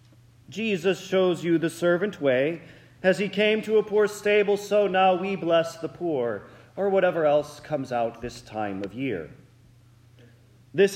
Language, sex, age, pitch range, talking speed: English, male, 40-59, 120-195 Hz, 160 wpm